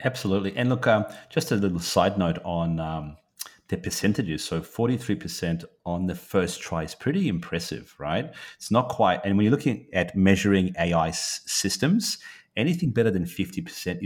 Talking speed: 160 wpm